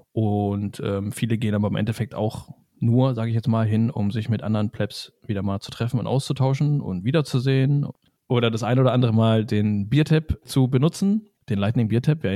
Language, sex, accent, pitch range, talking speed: German, male, German, 115-150 Hz, 200 wpm